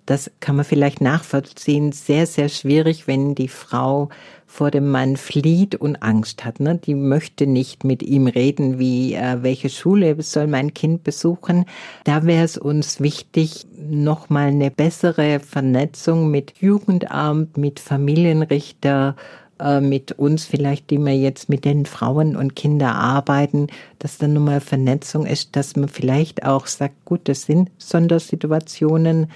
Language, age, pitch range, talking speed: German, 50-69, 135-155 Hz, 145 wpm